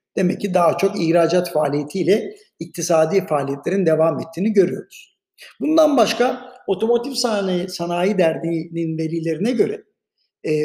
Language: Turkish